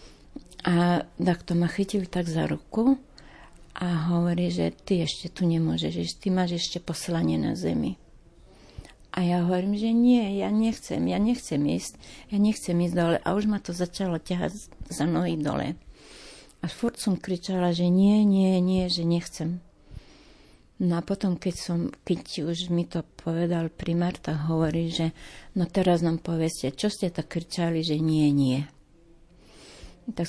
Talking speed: 160 wpm